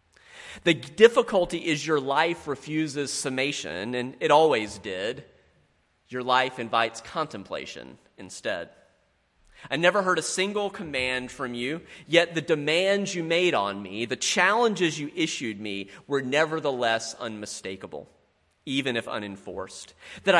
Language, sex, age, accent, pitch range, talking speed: English, male, 30-49, American, 110-170 Hz, 125 wpm